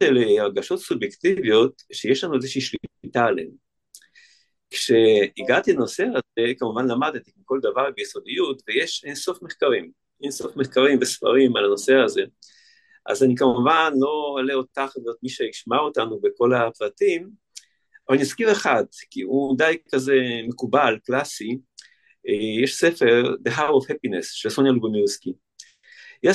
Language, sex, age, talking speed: Hebrew, male, 50-69, 130 wpm